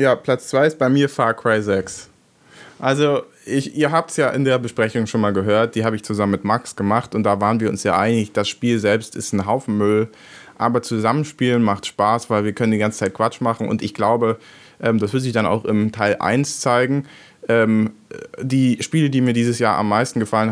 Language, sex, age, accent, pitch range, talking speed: German, male, 20-39, German, 110-130 Hz, 220 wpm